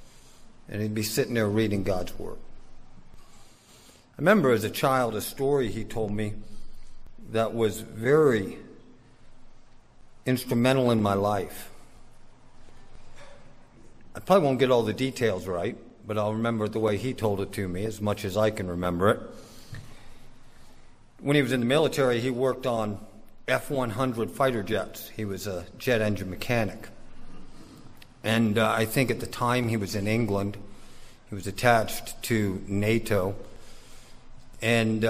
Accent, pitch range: American, 105-125 Hz